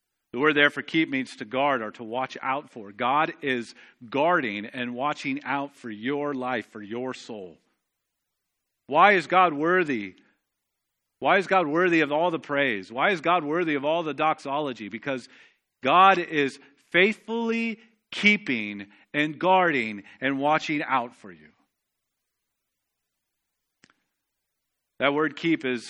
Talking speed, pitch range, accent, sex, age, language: 140 wpm, 130-180 Hz, American, male, 40-59, English